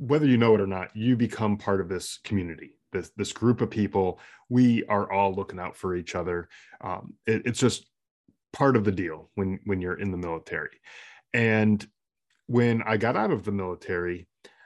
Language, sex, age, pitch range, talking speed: English, male, 20-39, 90-110 Hz, 190 wpm